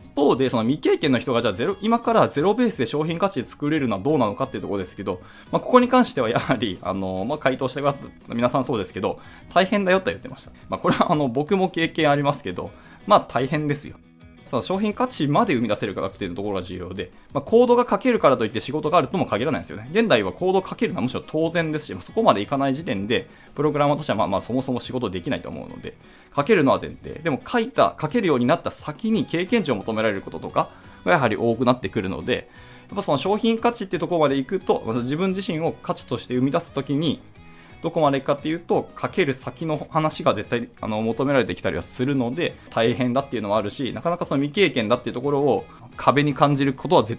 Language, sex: Japanese, male